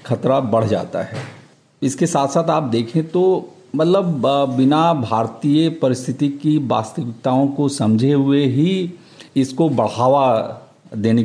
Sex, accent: male, native